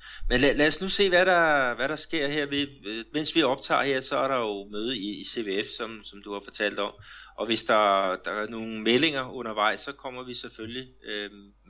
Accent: native